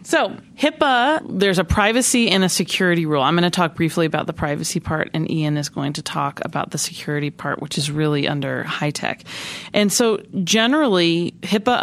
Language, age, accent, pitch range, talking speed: English, 30-49, American, 155-195 Hz, 195 wpm